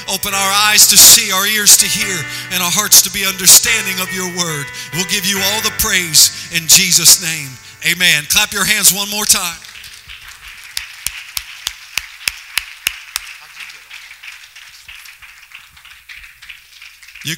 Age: 50-69